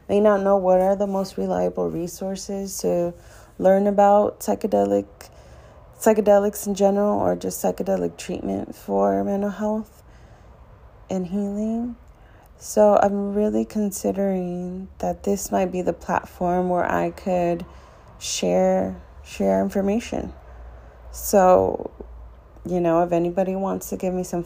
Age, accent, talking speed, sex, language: 30-49, American, 125 wpm, female, English